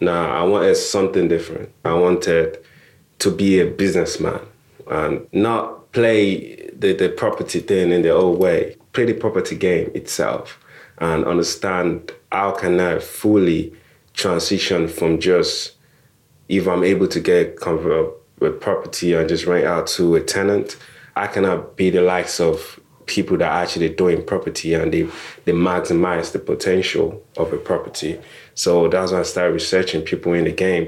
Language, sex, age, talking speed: English, male, 30-49, 155 wpm